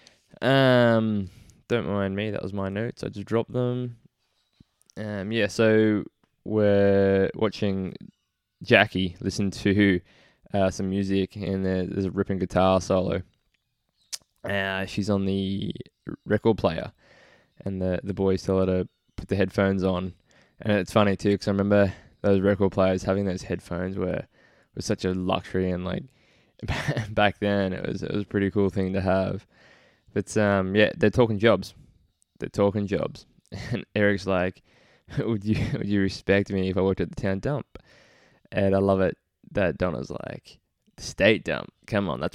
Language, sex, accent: English, male, Australian